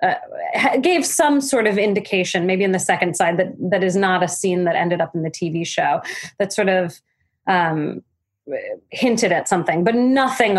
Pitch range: 175-220 Hz